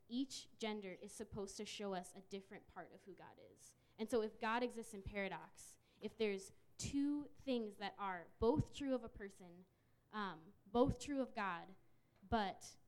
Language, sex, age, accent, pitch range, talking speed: English, female, 10-29, American, 190-230 Hz, 175 wpm